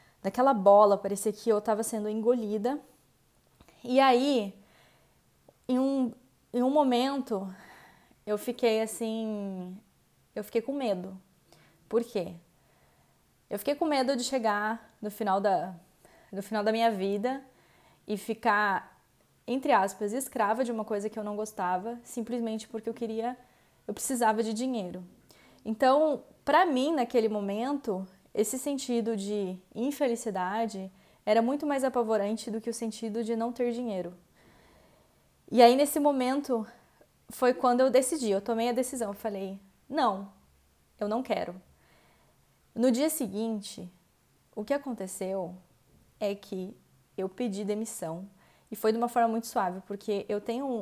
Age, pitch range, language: 20-39, 200-245 Hz, English